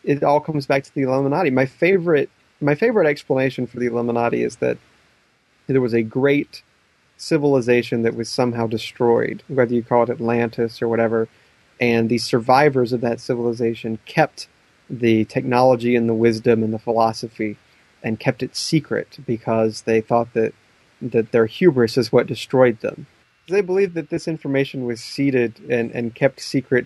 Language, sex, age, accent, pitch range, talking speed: English, male, 30-49, American, 115-130 Hz, 165 wpm